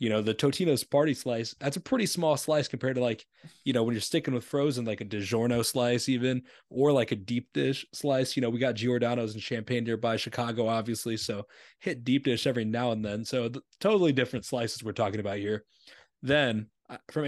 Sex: male